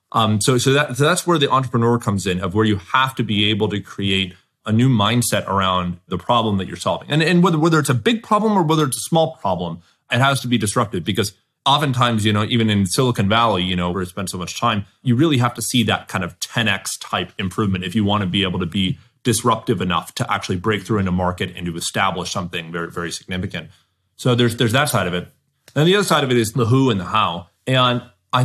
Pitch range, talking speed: 100-130 Hz, 255 wpm